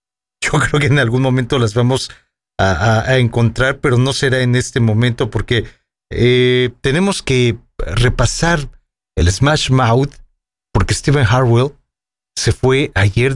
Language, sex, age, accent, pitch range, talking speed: English, male, 40-59, Mexican, 110-135 Hz, 145 wpm